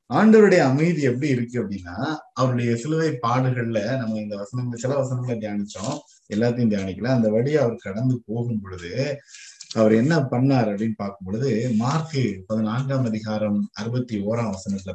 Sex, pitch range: male, 105-135 Hz